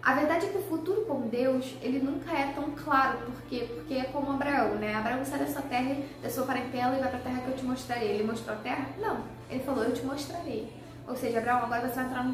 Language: Portuguese